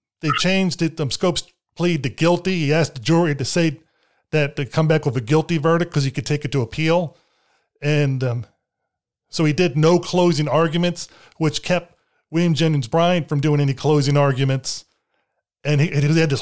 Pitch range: 140-170 Hz